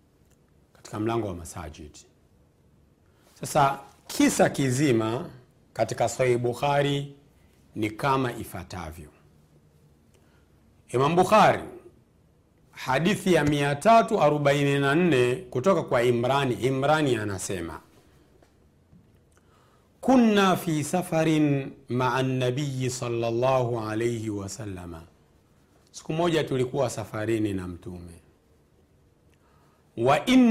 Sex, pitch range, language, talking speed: male, 95-155 Hz, Swahili, 75 wpm